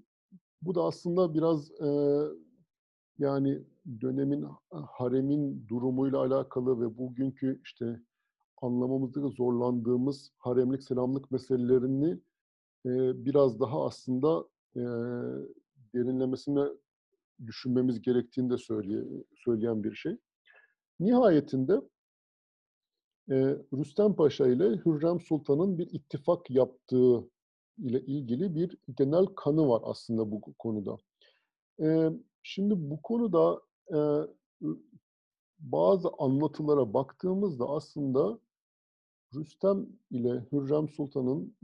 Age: 50-69